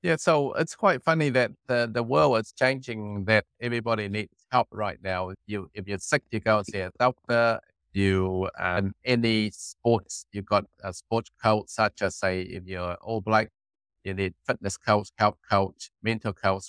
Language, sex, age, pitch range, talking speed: English, male, 50-69, 100-130 Hz, 185 wpm